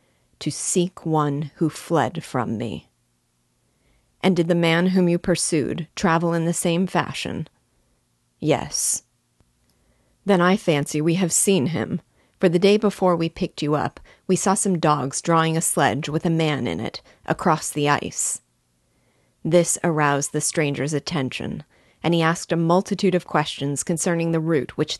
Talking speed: 160 wpm